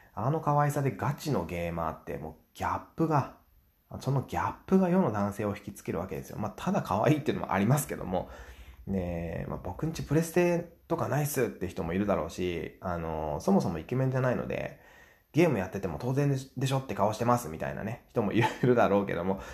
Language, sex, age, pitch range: Japanese, male, 20-39, 95-145 Hz